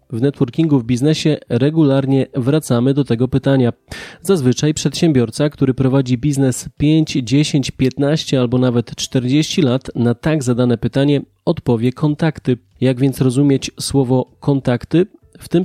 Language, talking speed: Polish, 130 wpm